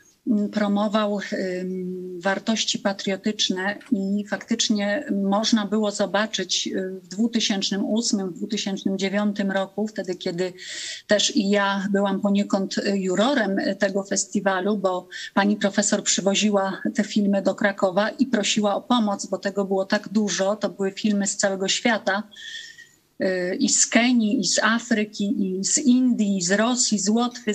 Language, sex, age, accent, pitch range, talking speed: Polish, female, 30-49, native, 200-225 Hz, 125 wpm